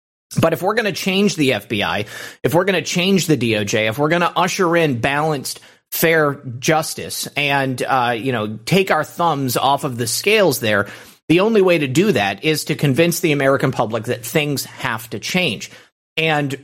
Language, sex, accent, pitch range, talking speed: English, male, American, 125-165 Hz, 195 wpm